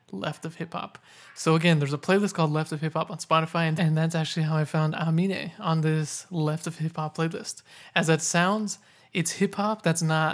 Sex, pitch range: male, 155-170 Hz